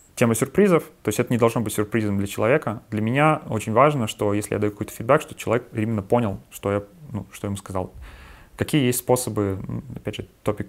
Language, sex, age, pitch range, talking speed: Russian, male, 30-49, 100-125 Hz, 215 wpm